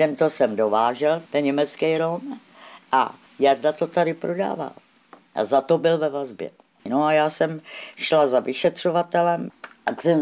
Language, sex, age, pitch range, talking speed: Czech, female, 60-79, 140-165 Hz, 155 wpm